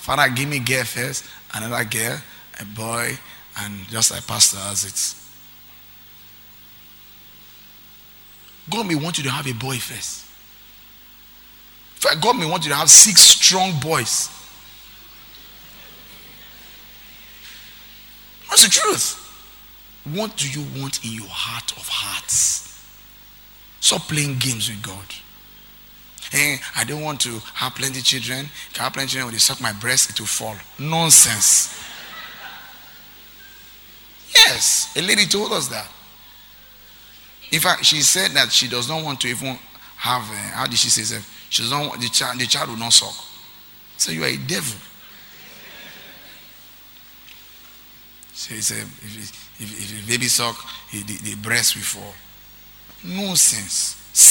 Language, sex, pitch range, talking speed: English, male, 110-145 Hz, 140 wpm